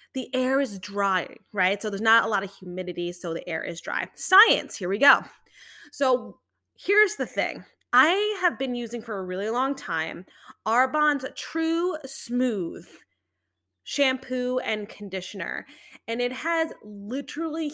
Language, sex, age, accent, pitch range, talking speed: English, female, 20-39, American, 200-270 Hz, 150 wpm